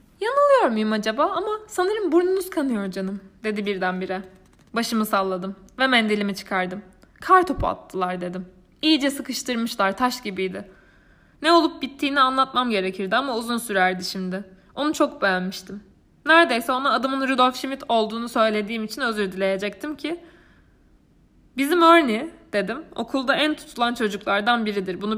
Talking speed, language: 130 wpm, Turkish